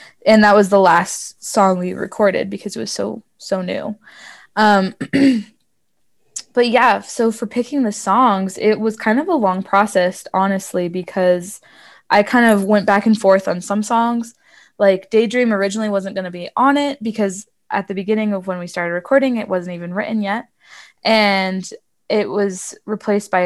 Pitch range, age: 185-220 Hz, 20-39